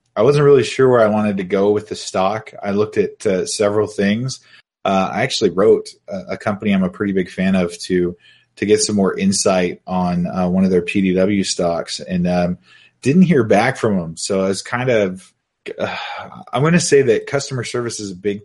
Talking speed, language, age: 220 wpm, English, 20-39